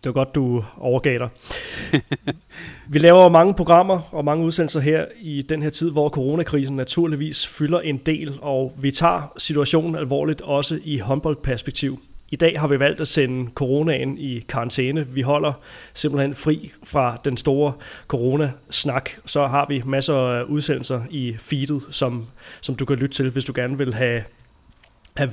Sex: male